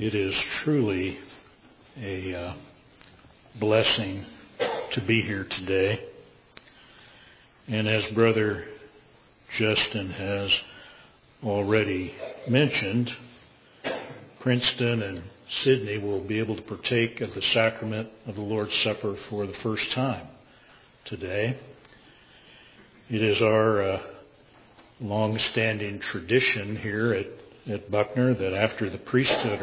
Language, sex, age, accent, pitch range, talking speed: English, male, 60-79, American, 100-120 Hz, 105 wpm